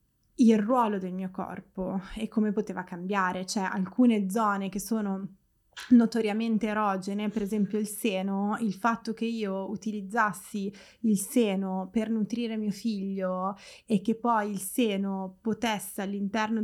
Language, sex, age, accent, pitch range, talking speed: Italian, female, 20-39, native, 195-220 Hz, 135 wpm